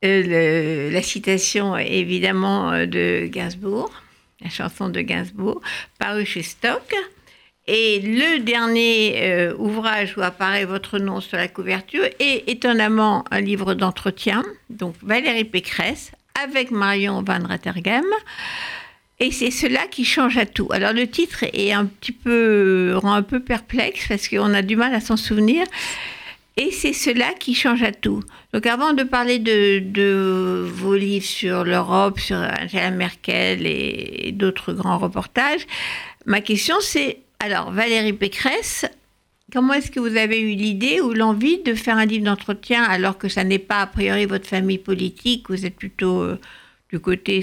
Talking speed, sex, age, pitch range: 150 wpm, female, 60-79, 195-240 Hz